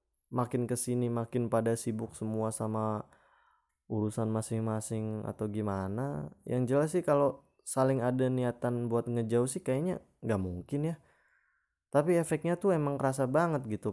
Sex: male